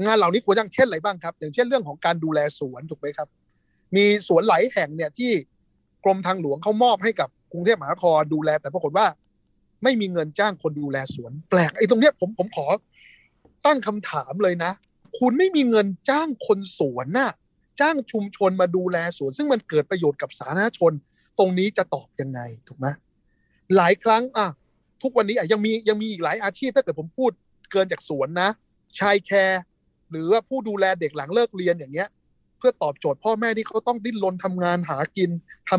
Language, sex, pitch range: Thai, male, 155-220 Hz